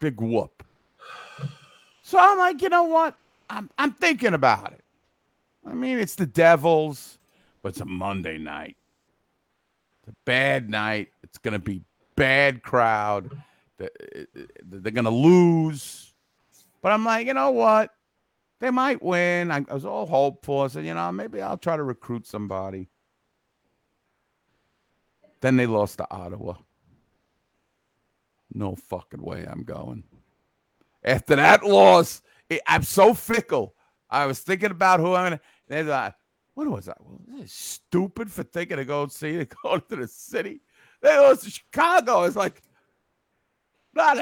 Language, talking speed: English, 150 wpm